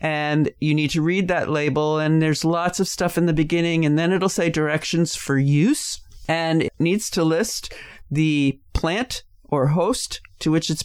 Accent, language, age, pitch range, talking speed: American, English, 40-59, 140-165 Hz, 190 wpm